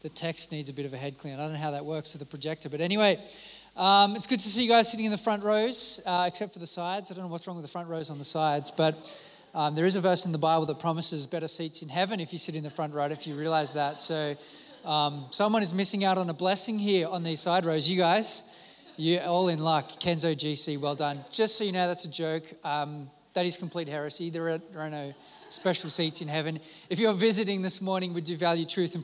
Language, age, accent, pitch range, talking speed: English, 20-39, Australian, 160-205 Hz, 265 wpm